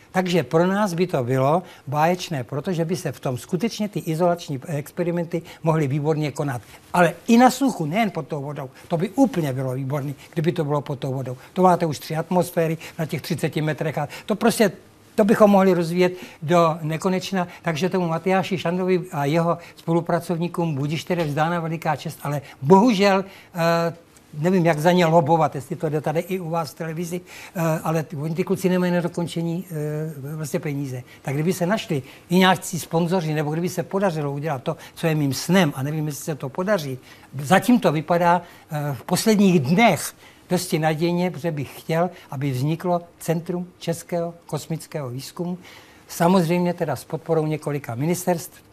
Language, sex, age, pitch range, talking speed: Czech, male, 60-79, 150-180 Hz, 170 wpm